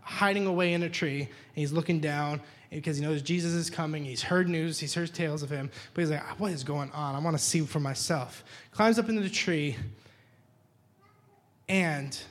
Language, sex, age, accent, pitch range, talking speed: English, male, 20-39, American, 125-175 Hz, 205 wpm